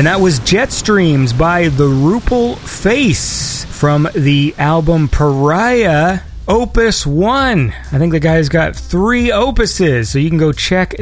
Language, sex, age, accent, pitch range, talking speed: English, male, 30-49, American, 140-195 Hz, 140 wpm